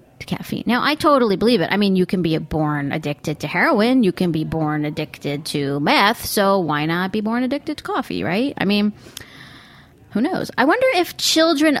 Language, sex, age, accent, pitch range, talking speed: English, female, 30-49, American, 160-260 Hz, 200 wpm